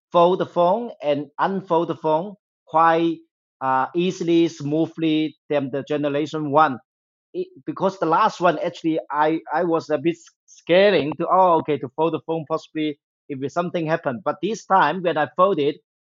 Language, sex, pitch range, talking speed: English, male, 140-170 Hz, 170 wpm